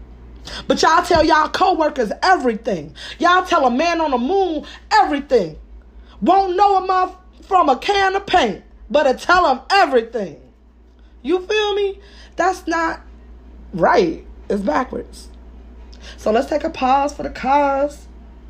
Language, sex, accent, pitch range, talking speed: English, female, American, 180-265 Hz, 145 wpm